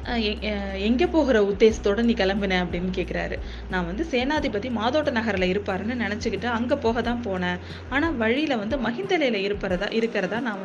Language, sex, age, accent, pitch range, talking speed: Tamil, female, 20-39, native, 190-235 Hz, 145 wpm